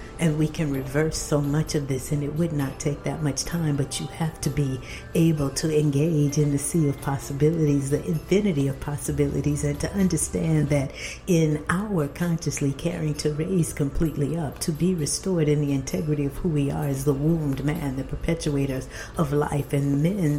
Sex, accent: female, American